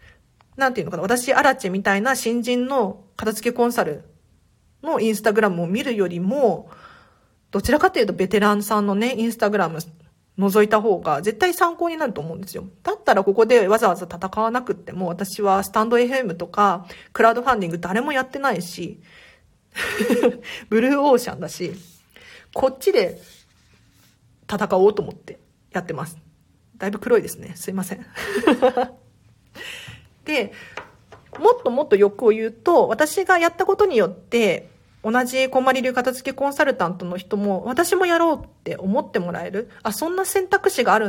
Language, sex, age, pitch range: Japanese, female, 40-59, 195-275 Hz